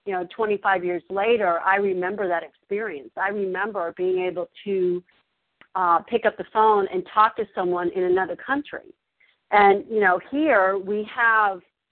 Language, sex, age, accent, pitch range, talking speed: English, female, 50-69, American, 180-210 Hz, 160 wpm